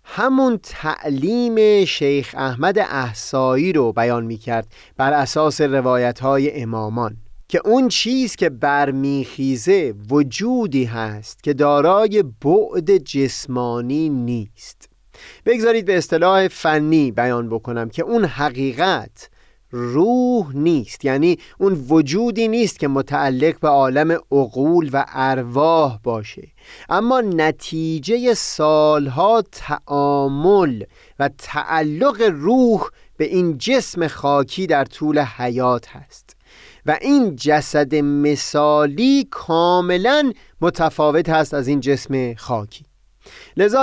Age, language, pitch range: 30-49, Persian, 135-190 Hz